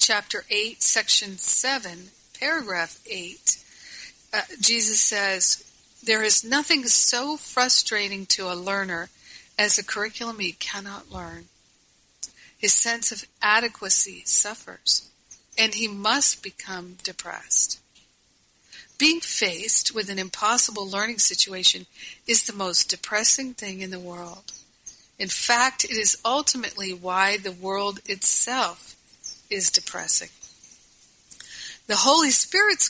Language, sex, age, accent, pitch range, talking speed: English, female, 50-69, American, 195-235 Hz, 110 wpm